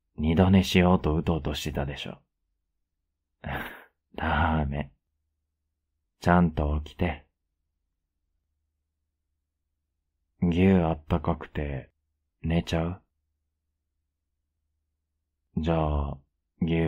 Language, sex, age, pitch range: Japanese, male, 30-49, 75-80 Hz